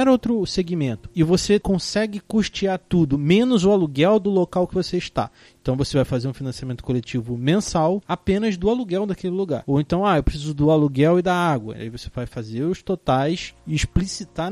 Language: Portuguese